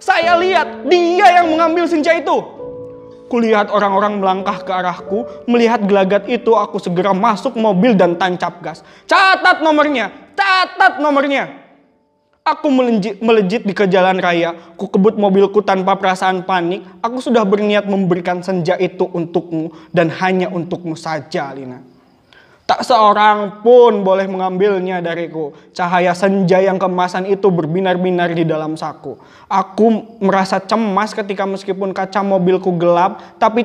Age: 20-39